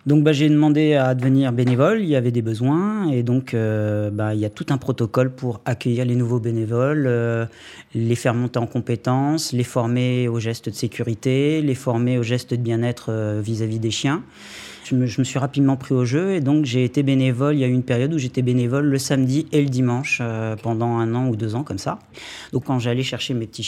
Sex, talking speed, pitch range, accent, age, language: male, 235 wpm, 120-140 Hz, French, 30-49, French